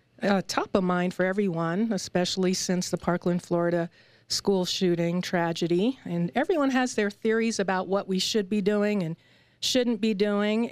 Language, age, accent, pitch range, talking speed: English, 50-69, American, 180-215 Hz, 160 wpm